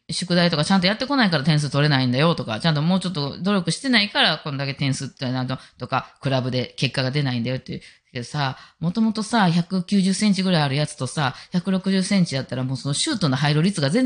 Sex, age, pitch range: female, 20-39, 130-195 Hz